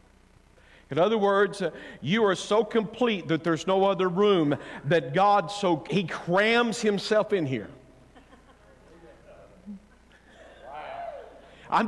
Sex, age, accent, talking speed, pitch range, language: male, 50-69, American, 110 wpm, 190-240 Hz, English